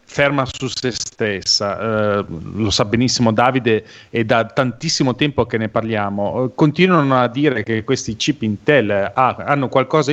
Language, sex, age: Italian, male, 40-59